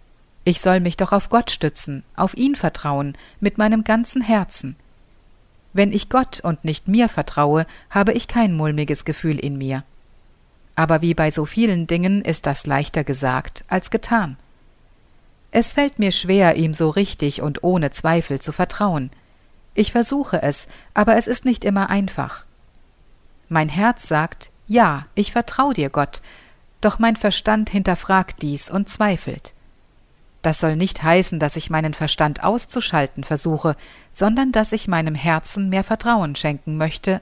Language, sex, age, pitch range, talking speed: German, female, 50-69, 150-210 Hz, 155 wpm